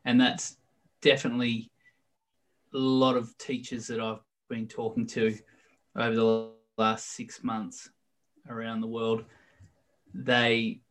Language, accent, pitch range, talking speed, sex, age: English, Australian, 115-175 Hz, 115 wpm, male, 20-39